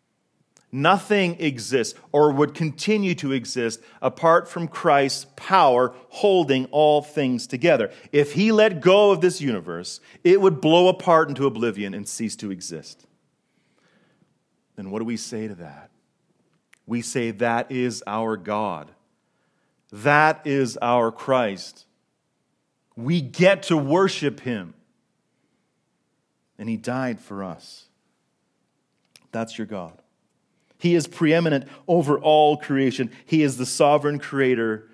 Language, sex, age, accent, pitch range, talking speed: English, male, 40-59, American, 110-155 Hz, 125 wpm